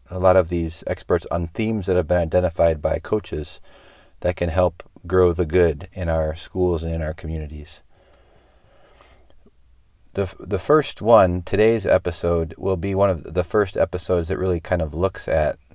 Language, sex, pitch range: English, male, 80-90 Hz